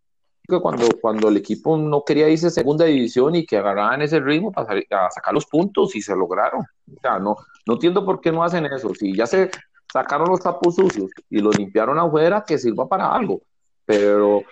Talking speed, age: 205 wpm, 40-59